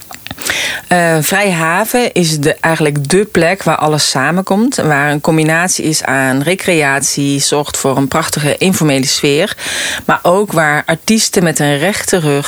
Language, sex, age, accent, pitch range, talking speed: Dutch, female, 40-59, Dutch, 140-180 Hz, 145 wpm